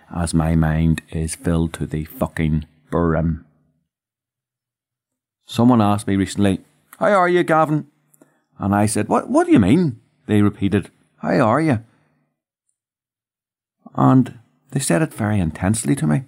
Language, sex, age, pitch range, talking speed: English, male, 40-59, 85-120 Hz, 140 wpm